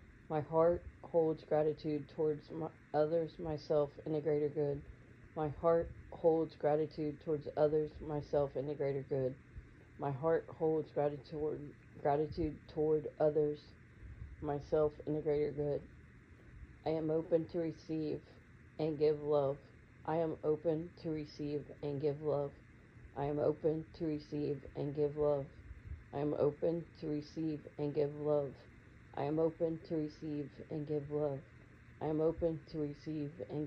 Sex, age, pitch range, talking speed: female, 40-59, 140-155 Hz, 145 wpm